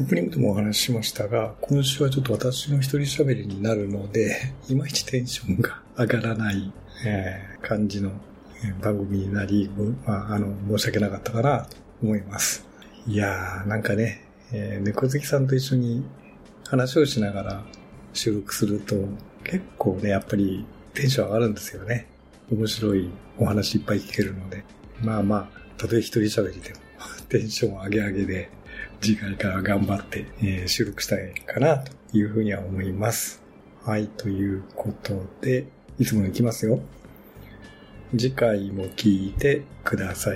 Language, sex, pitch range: Japanese, male, 100-120 Hz